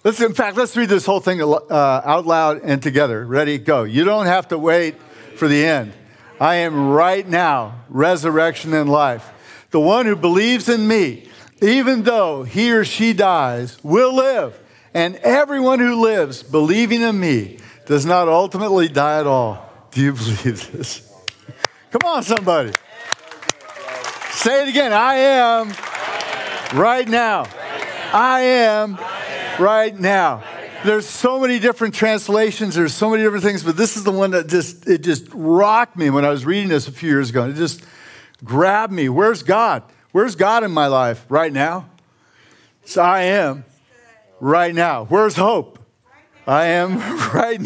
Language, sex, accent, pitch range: English, male, American, 145-220 Hz